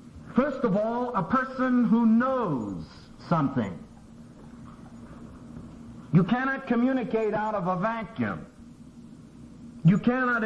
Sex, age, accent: male, 50-69, American